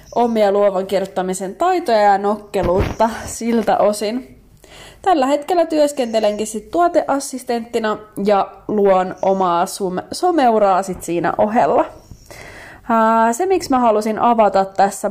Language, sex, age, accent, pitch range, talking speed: Finnish, female, 20-39, native, 195-235 Hz, 105 wpm